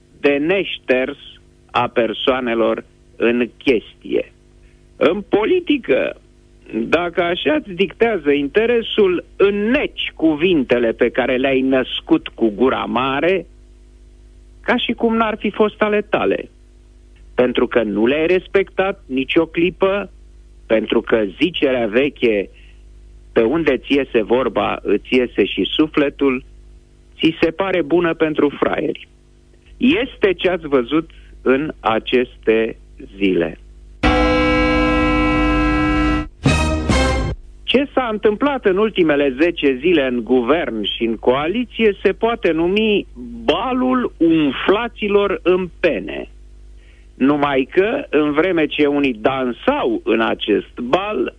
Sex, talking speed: male, 110 wpm